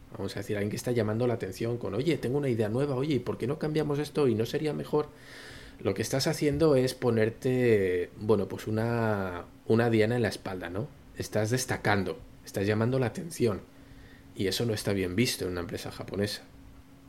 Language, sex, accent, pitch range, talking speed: Spanish, male, Spanish, 100-130 Hz, 195 wpm